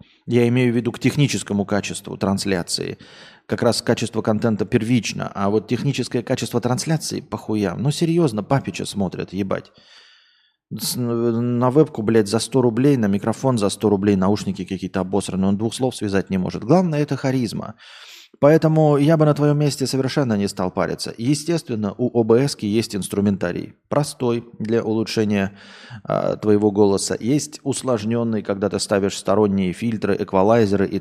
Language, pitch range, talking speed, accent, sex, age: Russian, 100-130 Hz, 150 wpm, native, male, 20-39